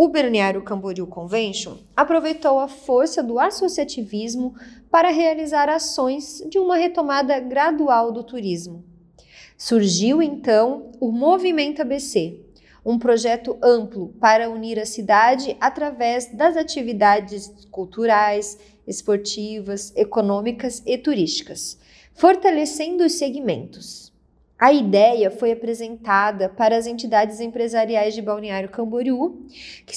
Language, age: Portuguese, 30-49